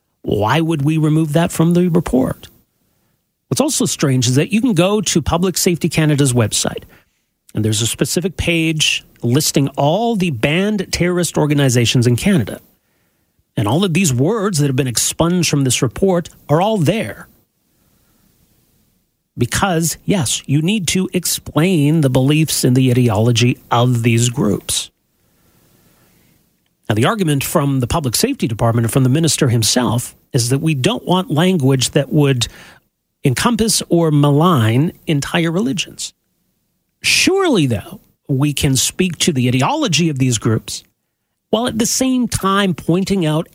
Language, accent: English, American